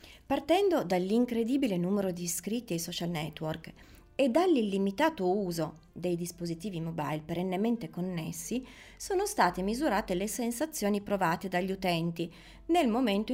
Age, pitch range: 30-49, 175-265 Hz